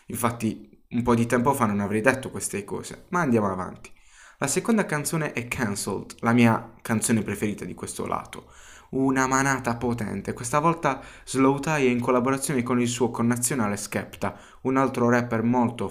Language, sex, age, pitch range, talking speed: Italian, male, 20-39, 110-130 Hz, 165 wpm